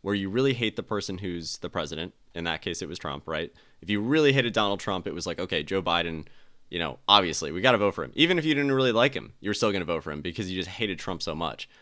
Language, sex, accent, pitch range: English, male, American, 85-120 Hz